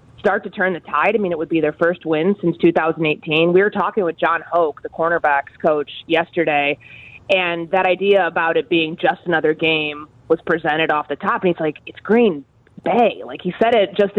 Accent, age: American, 20-39